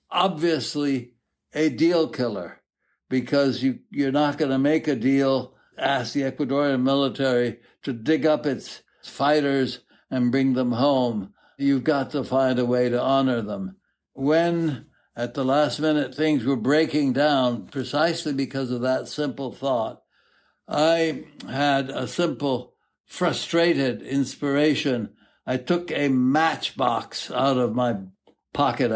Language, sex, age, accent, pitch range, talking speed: English, male, 60-79, American, 130-160 Hz, 130 wpm